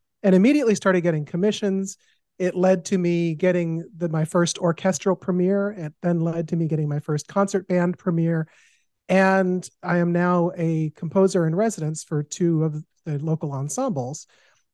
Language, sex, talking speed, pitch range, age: English, male, 165 wpm, 155-185 Hz, 40-59